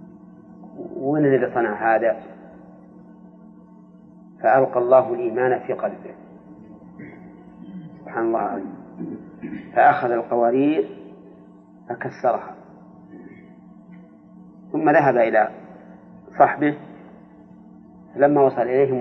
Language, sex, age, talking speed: Arabic, male, 40-59, 70 wpm